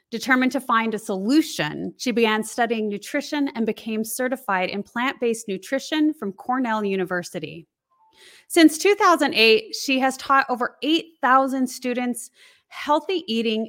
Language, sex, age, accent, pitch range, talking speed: English, female, 30-49, American, 215-285 Hz, 125 wpm